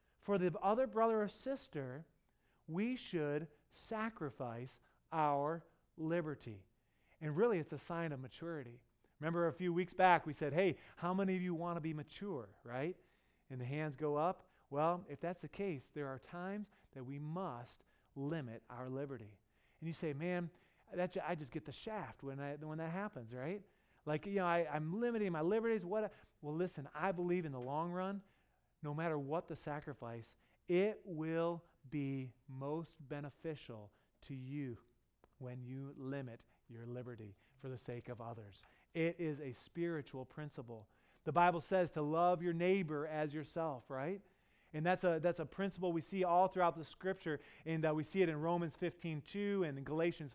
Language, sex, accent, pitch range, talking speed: English, male, American, 145-185 Hz, 175 wpm